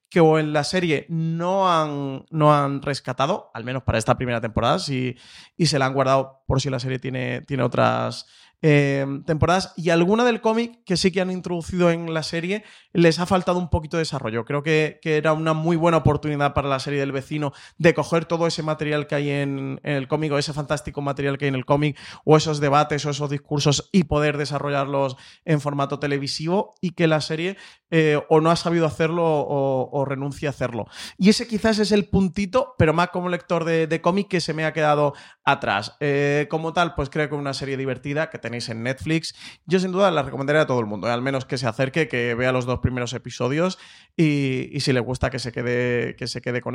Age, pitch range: 30-49, 130-160 Hz